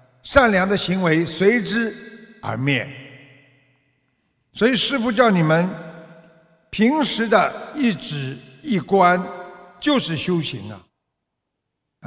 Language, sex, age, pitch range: Chinese, male, 60-79, 140-225 Hz